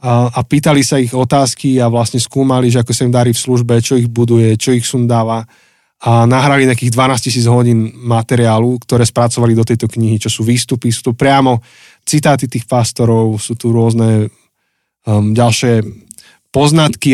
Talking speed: 170 wpm